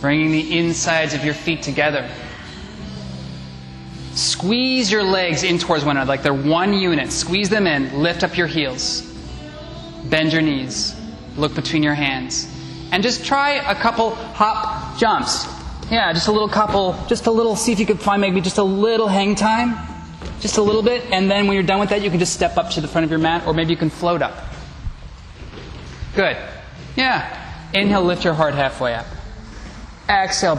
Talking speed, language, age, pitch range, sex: 185 wpm, English, 20-39, 110-180 Hz, male